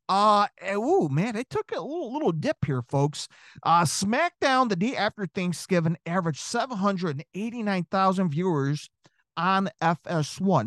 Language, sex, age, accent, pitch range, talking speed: English, male, 40-59, American, 145-205 Hz, 145 wpm